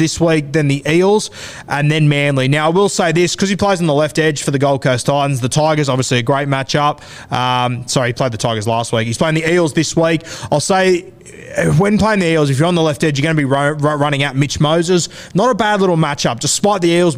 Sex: male